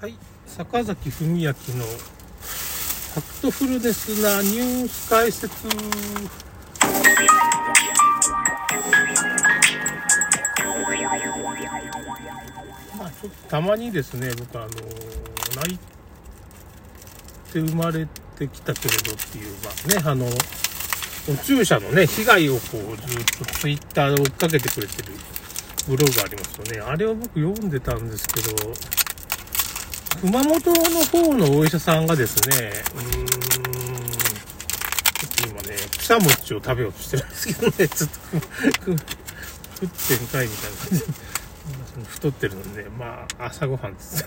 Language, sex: Japanese, male